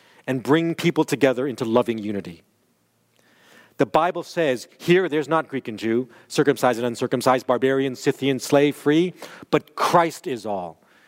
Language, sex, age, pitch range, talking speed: English, male, 40-59, 130-175 Hz, 145 wpm